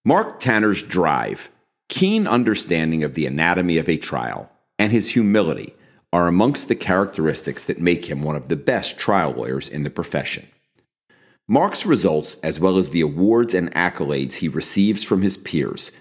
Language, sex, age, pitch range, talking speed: English, male, 40-59, 80-105 Hz, 165 wpm